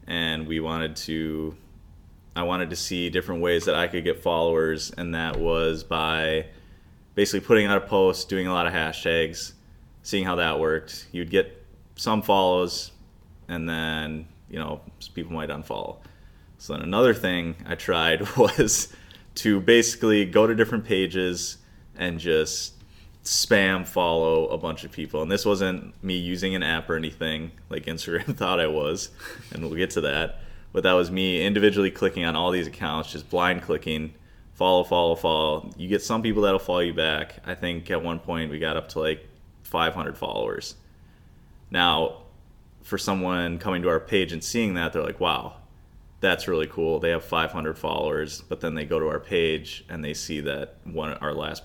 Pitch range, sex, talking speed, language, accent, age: 80-95 Hz, male, 180 wpm, English, American, 20-39